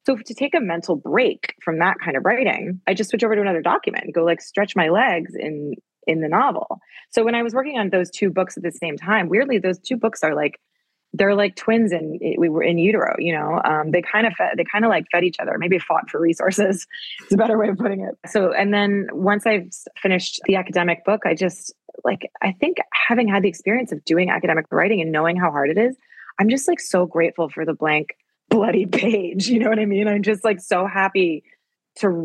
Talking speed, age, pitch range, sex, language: 240 wpm, 20-39, 175-225 Hz, female, English